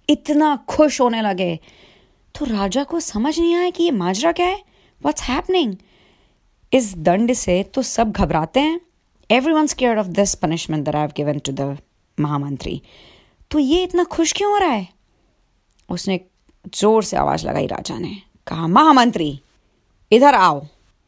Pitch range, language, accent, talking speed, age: 160-255 Hz, Hindi, native, 155 wpm, 30-49